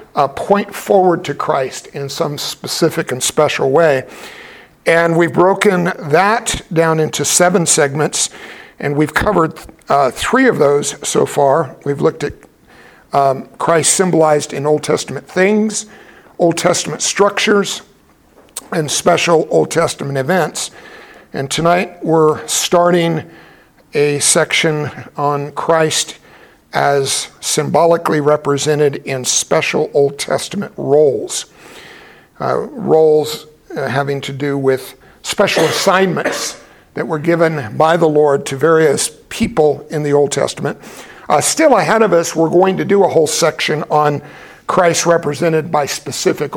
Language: English